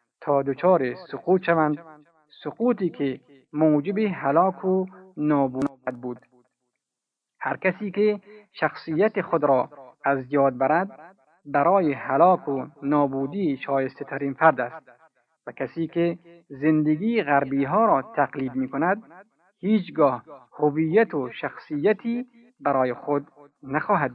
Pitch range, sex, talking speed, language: 135-180 Hz, male, 110 wpm, Persian